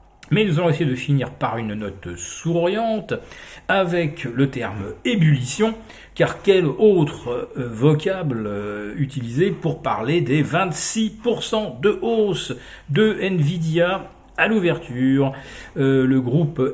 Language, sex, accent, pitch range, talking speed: French, male, French, 125-170 Hz, 115 wpm